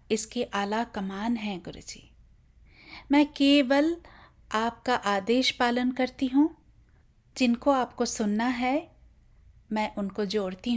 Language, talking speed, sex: English, 105 wpm, female